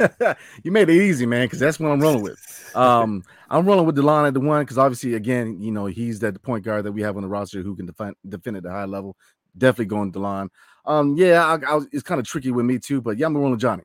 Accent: American